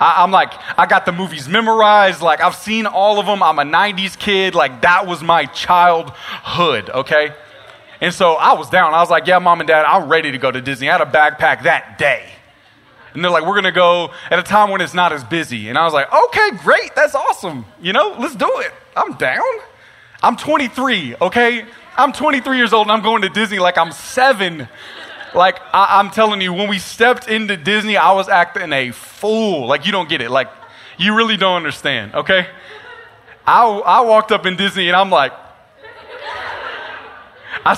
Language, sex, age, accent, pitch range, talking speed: English, male, 30-49, American, 175-270 Hz, 200 wpm